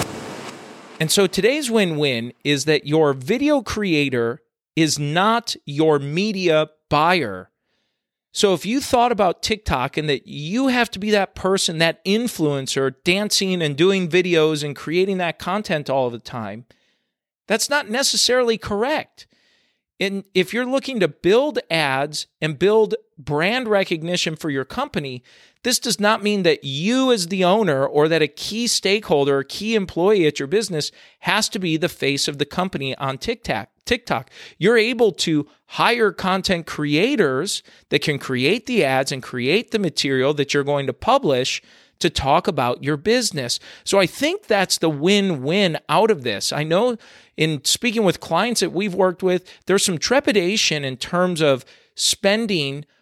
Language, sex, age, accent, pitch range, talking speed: English, male, 40-59, American, 150-215 Hz, 160 wpm